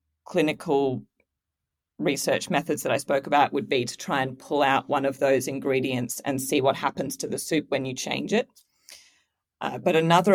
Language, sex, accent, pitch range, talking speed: English, female, Australian, 140-170 Hz, 185 wpm